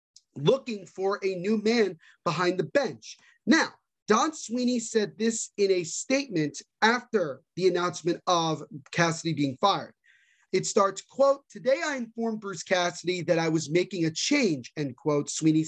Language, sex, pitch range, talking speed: English, male, 165-230 Hz, 155 wpm